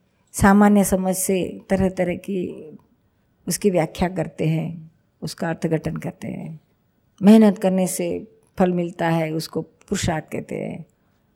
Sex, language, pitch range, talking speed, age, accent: female, Hindi, 165-205 Hz, 125 wpm, 50-69, native